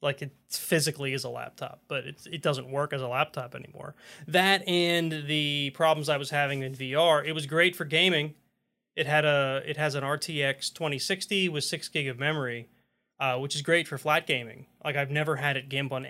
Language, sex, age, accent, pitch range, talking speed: English, male, 20-39, American, 135-170 Hz, 210 wpm